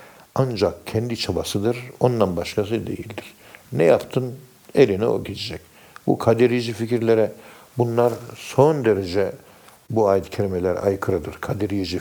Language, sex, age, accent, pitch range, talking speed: Turkish, male, 60-79, native, 105-120 Hz, 115 wpm